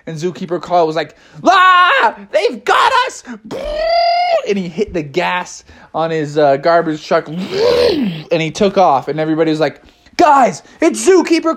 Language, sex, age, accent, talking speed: English, male, 20-39, American, 160 wpm